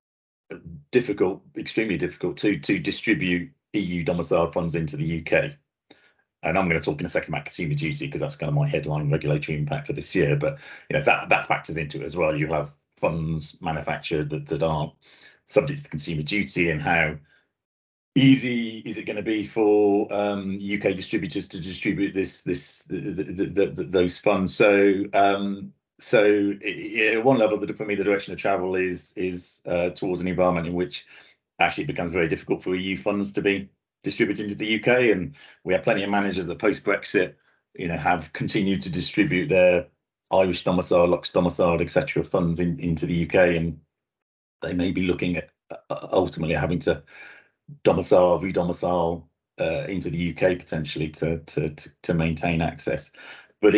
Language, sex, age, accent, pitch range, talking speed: English, male, 40-59, British, 85-105 Hz, 175 wpm